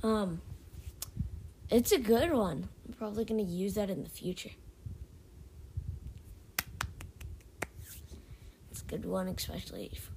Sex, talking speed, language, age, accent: female, 110 wpm, English, 20-39, American